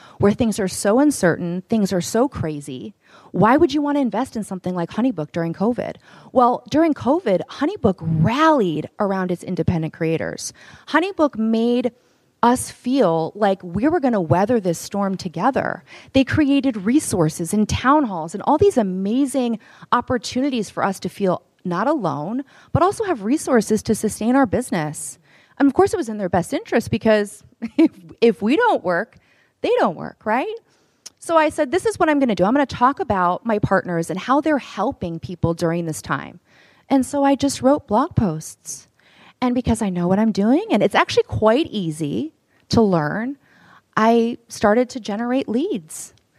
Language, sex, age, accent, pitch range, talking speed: English, female, 30-49, American, 180-270 Hz, 180 wpm